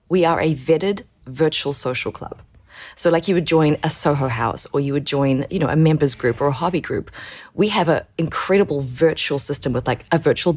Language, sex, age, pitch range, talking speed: English, female, 30-49, 145-180 Hz, 215 wpm